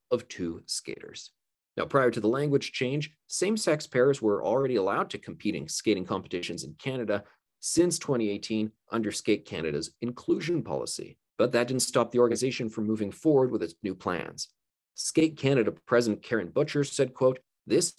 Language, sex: English, male